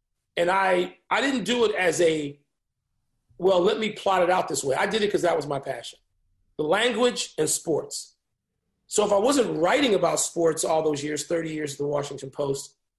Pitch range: 140-190 Hz